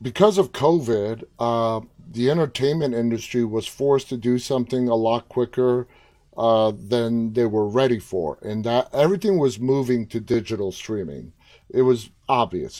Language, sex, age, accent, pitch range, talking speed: English, male, 30-49, American, 115-135 Hz, 150 wpm